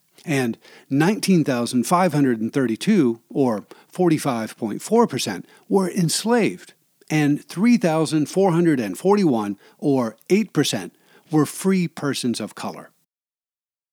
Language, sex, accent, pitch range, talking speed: English, male, American, 135-180 Hz, 60 wpm